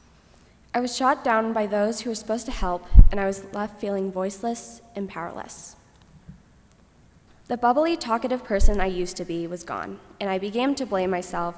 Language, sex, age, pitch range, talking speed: English, female, 10-29, 190-230 Hz, 180 wpm